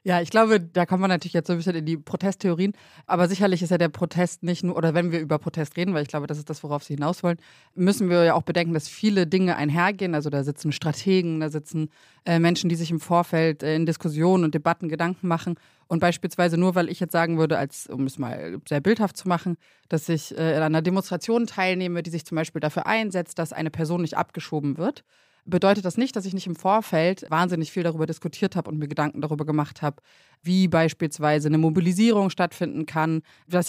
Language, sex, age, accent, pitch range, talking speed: German, female, 30-49, German, 155-180 Hz, 225 wpm